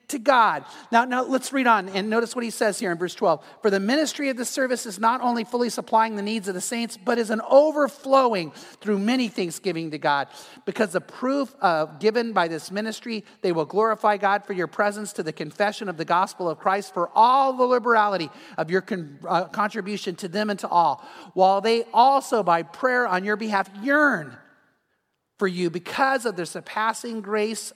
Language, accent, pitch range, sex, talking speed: English, American, 195-240 Hz, male, 200 wpm